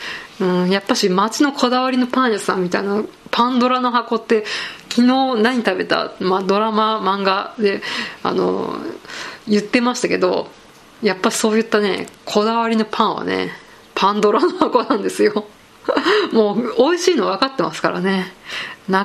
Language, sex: Japanese, female